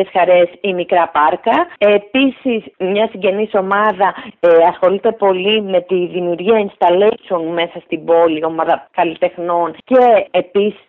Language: English